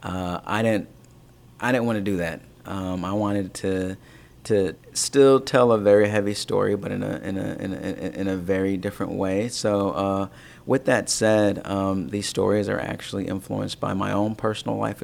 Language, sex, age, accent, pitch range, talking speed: English, male, 30-49, American, 95-105 Hz, 190 wpm